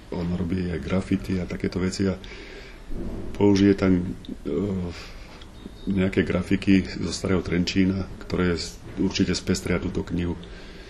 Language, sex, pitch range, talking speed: Slovak, male, 90-95 Hz, 115 wpm